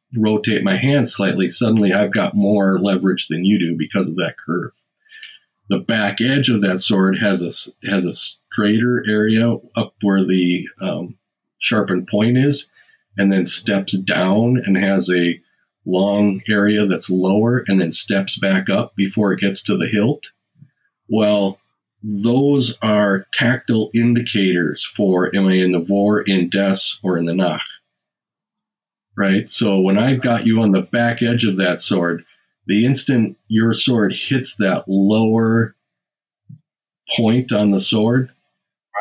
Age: 40-59